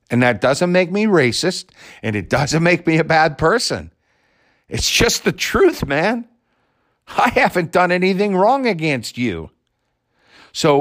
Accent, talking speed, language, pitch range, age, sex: American, 150 wpm, English, 135-210 Hz, 50-69, male